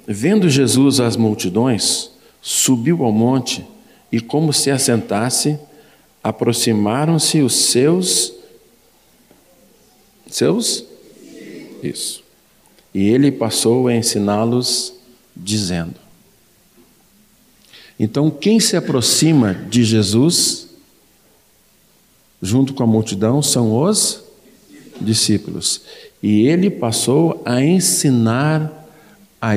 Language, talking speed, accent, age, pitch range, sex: Portuguese, 85 wpm, Brazilian, 50-69, 110-145 Hz, male